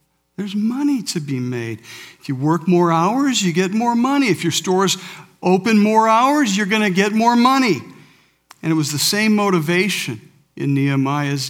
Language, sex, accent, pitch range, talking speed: English, male, American, 145-190 Hz, 180 wpm